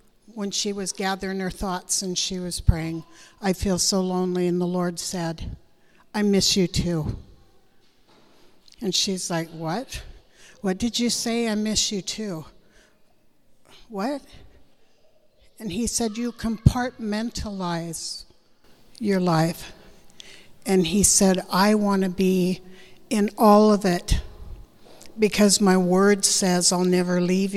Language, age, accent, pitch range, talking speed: English, 60-79, American, 180-210 Hz, 130 wpm